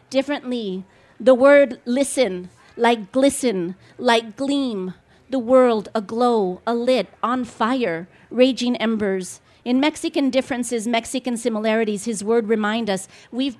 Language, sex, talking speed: English, female, 120 wpm